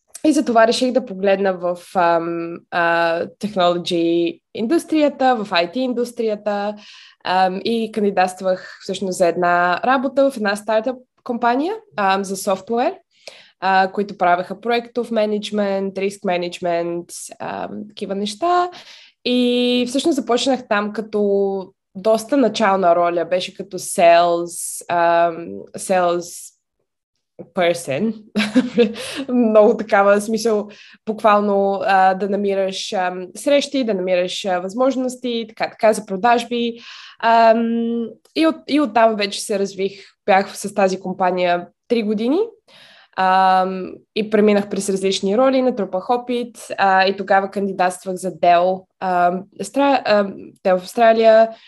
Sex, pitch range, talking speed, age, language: female, 185-235 Hz, 110 wpm, 20-39, Bulgarian